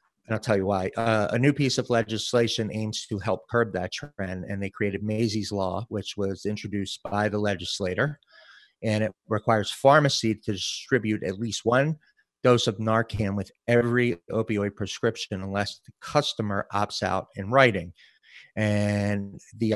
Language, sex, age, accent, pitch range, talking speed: English, male, 30-49, American, 100-115 Hz, 160 wpm